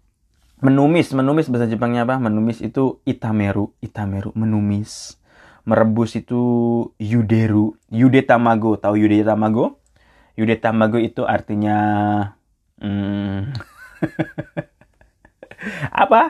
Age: 20-39